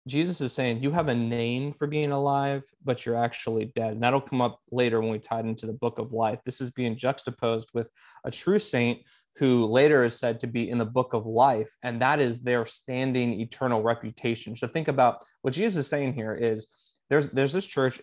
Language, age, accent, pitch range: English, 20-39, American, 115-140 Hz